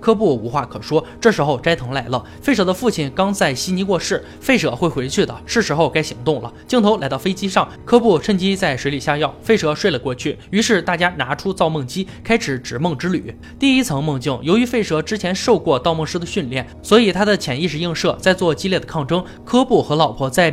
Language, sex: Chinese, male